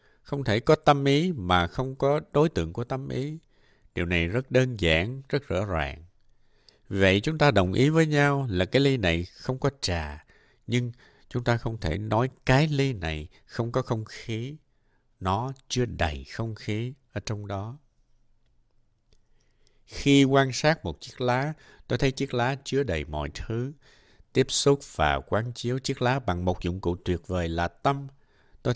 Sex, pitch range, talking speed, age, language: male, 100-140 Hz, 180 wpm, 60-79, Vietnamese